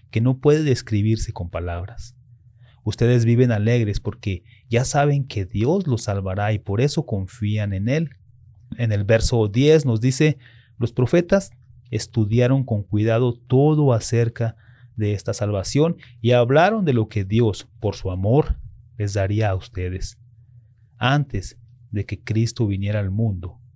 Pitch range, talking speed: 105-125 Hz, 145 wpm